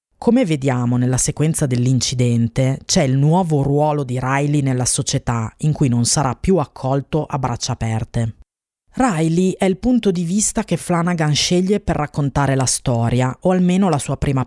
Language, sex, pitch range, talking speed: Italian, female, 130-170 Hz, 165 wpm